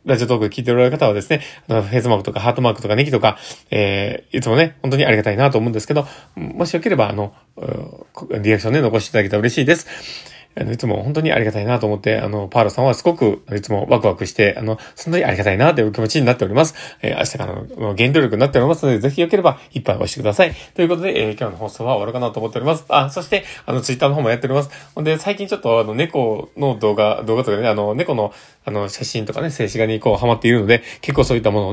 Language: Japanese